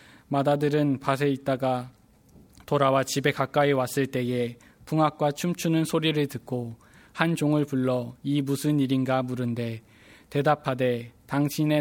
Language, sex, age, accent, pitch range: Korean, male, 20-39, native, 125-145 Hz